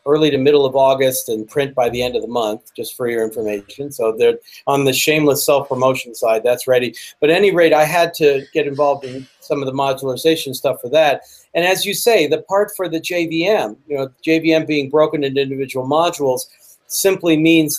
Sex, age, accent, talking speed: male, 40-59, American, 210 wpm